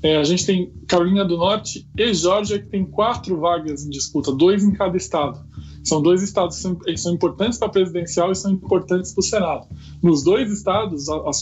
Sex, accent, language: male, Brazilian, Portuguese